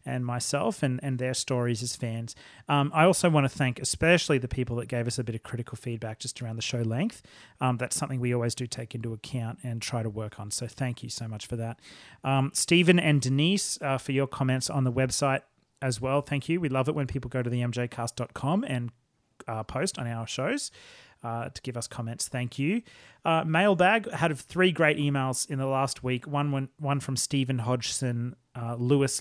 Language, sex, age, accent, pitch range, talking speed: English, male, 30-49, Australian, 120-145 Hz, 220 wpm